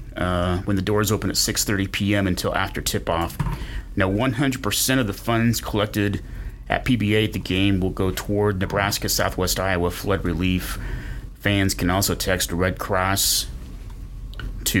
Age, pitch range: 30-49, 85-100 Hz